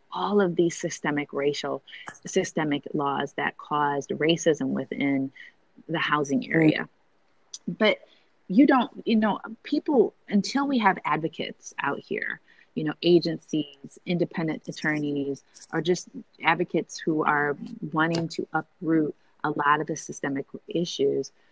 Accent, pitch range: American, 150-185 Hz